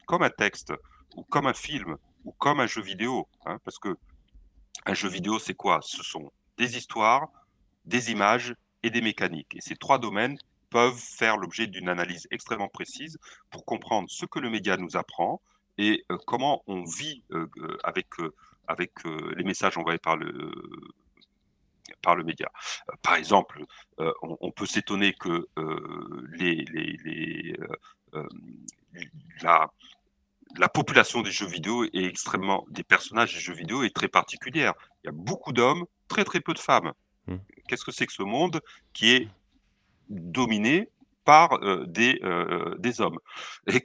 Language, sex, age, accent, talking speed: French, male, 40-59, French, 160 wpm